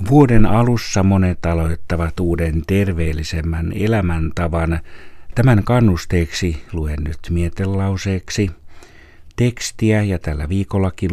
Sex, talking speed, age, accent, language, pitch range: male, 85 wpm, 60-79, native, Finnish, 80-100 Hz